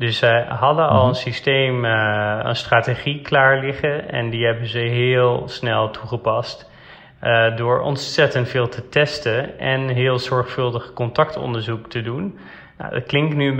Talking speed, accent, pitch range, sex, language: 150 wpm, Dutch, 120-140 Hz, male, Dutch